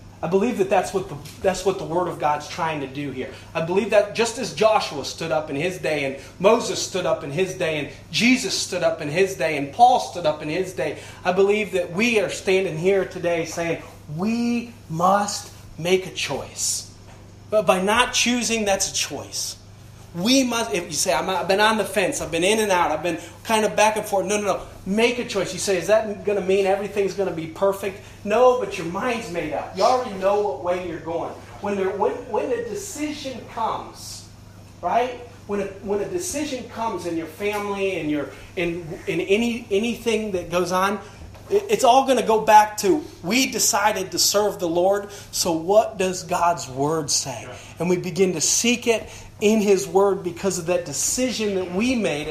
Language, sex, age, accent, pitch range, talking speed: English, male, 30-49, American, 140-210 Hz, 210 wpm